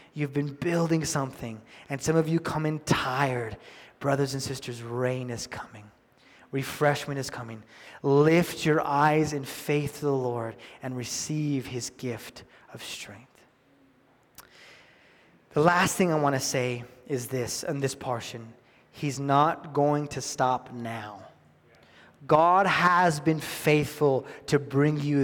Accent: American